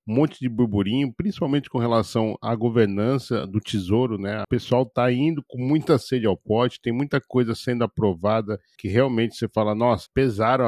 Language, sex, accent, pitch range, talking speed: Portuguese, male, Brazilian, 110-130 Hz, 180 wpm